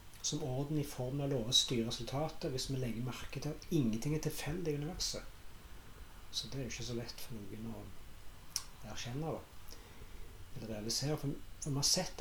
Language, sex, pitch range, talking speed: English, male, 115-145 Hz, 180 wpm